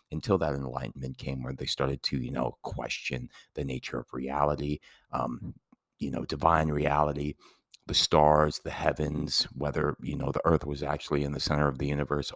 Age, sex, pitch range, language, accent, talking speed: 30-49, male, 70-85 Hz, English, American, 180 wpm